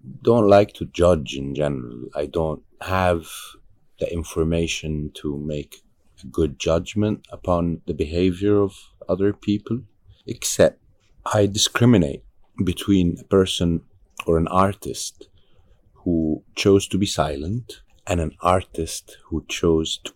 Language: English